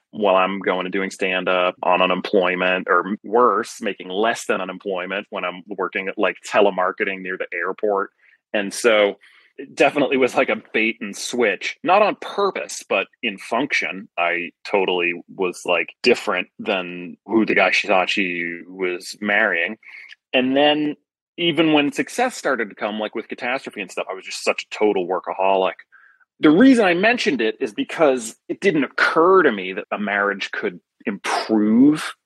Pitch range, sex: 95-115 Hz, male